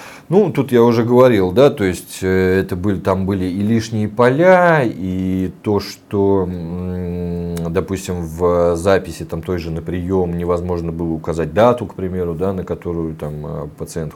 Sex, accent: male, native